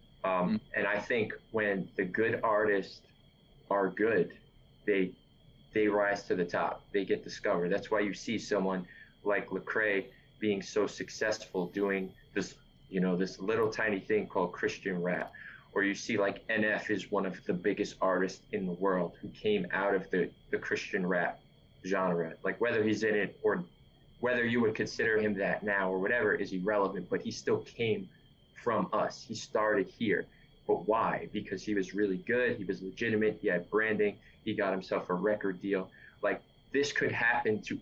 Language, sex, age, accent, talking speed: English, male, 20-39, American, 180 wpm